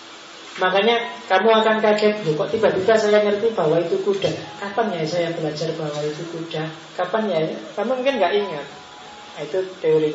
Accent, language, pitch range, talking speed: native, Indonesian, 160-205 Hz, 155 wpm